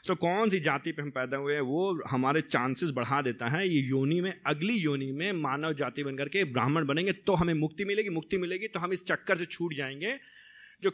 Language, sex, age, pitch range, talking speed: Hindi, male, 30-49, 130-165 Hz, 225 wpm